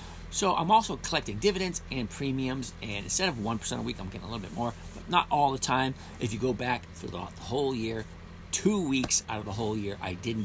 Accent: American